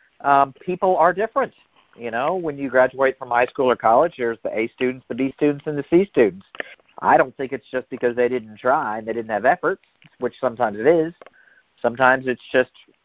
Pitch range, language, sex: 115-145 Hz, English, male